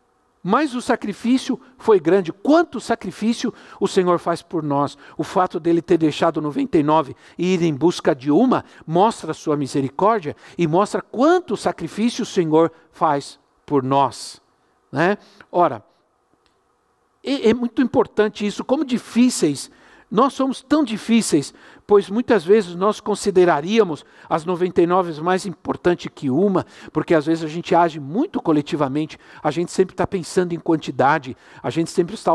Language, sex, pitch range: Portuguese, male, 150-190 Hz